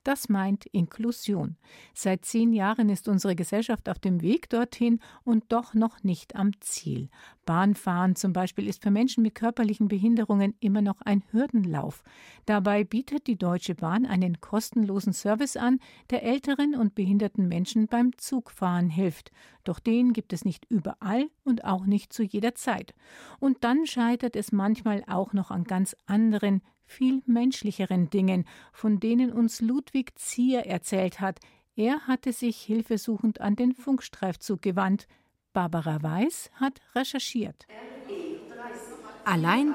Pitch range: 185-235 Hz